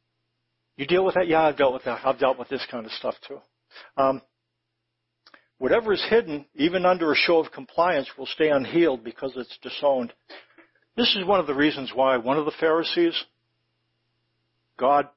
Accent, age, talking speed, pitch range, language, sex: American, 60-79, 180 wpm, 125-175 Hz, English, male